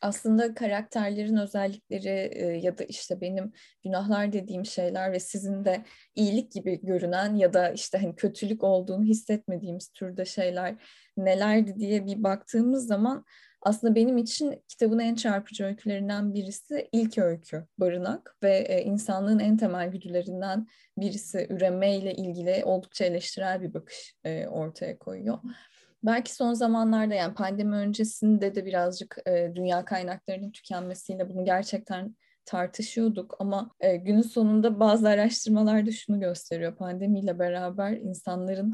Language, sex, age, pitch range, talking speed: Turkish, female, 10-29, 180-220 Hz, 125 wpm